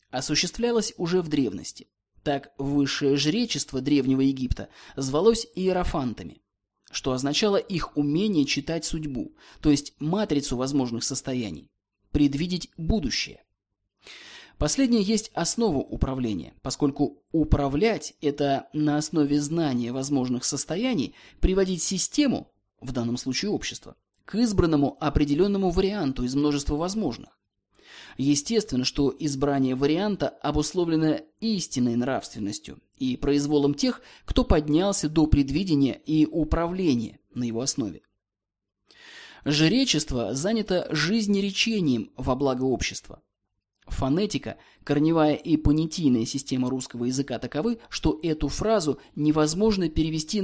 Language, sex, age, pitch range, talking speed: Russian, male, 20-39, 135-175 Hz, 105 wpm